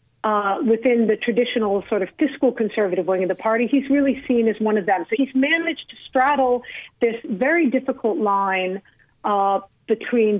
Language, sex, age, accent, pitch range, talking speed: English, female, 40-59, American, 215-250 Hz, 175 wpm